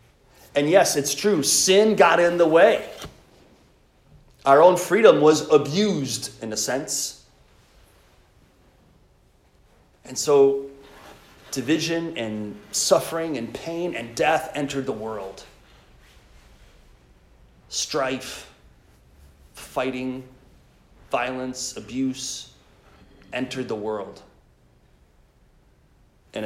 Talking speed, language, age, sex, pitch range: 85 wpm, English, 30-49, male, 105-140 Hz